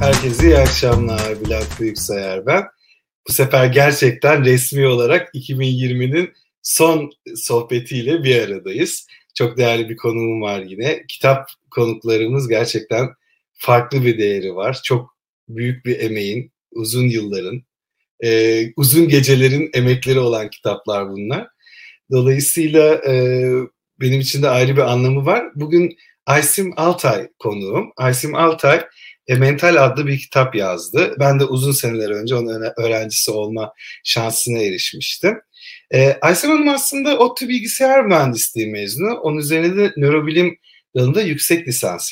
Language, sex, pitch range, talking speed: Turkish, male, 115-150 Hz, 120 wpm